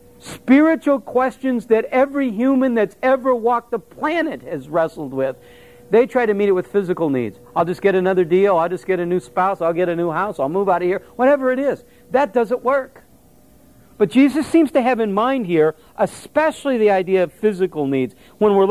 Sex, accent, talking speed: male, American, 205 wpm